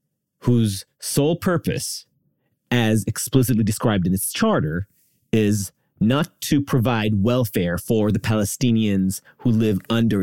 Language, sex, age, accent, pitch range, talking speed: English, male, 30-49, American, 115-170 Hz, 115 wpm